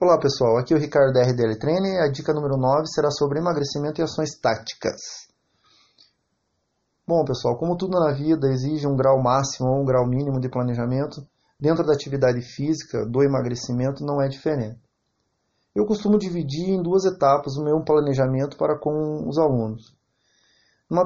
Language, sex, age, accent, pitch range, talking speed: English, male, 30-49, Brazilian, 130-160 Hz, 160 wpm